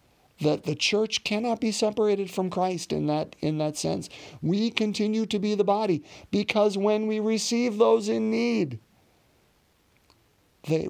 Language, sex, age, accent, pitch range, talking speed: English, male, 50-69, American, 125-165 Hz, 150 wpm